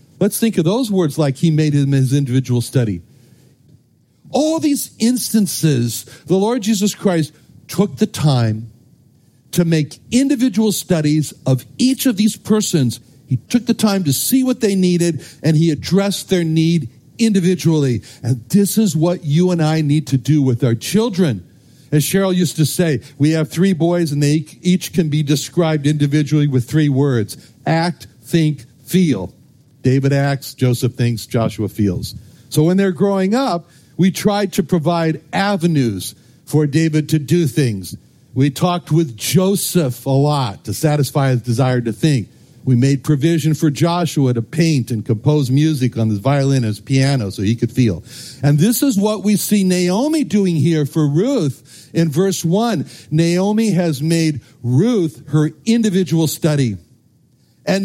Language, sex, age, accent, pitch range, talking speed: English, male, 60-79, American, 130-185 Hz, 160 wpm